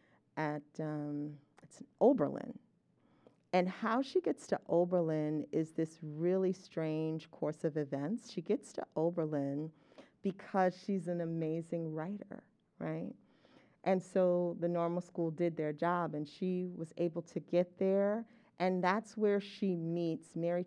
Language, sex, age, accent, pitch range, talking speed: English, female, 40-59, American, 155-180 Hz, 135 wpm